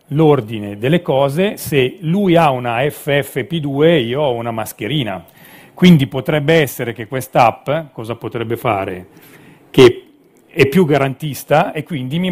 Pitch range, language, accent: 120-165 Hz, Italian, native